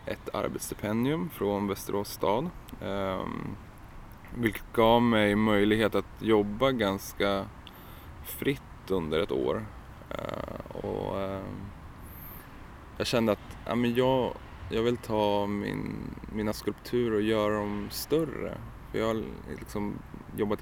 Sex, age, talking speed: male, 20-39, 100 wpm